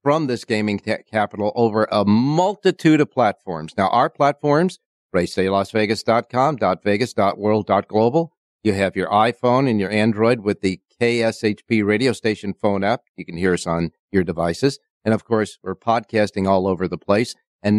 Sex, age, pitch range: male, 50-69, 95-125 Hz